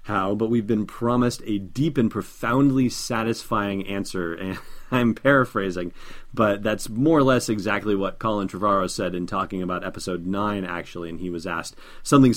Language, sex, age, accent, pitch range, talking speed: English, male, 30-49, American, 95-120 Hz, 170 wpm